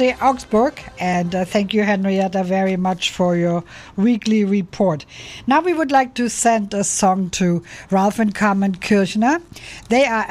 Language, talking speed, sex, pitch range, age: English, 150 wpm, female, 175-210 Hz, 60-79